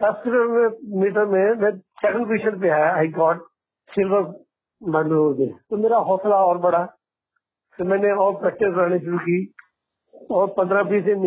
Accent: Indian